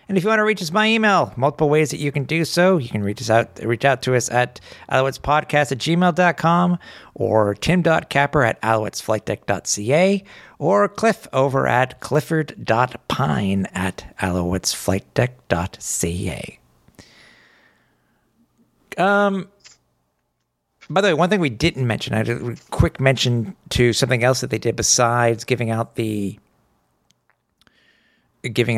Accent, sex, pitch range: American, male, 110-145 Hz